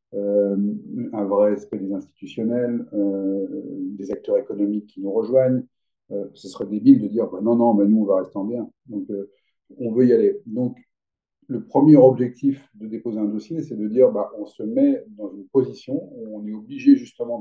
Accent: French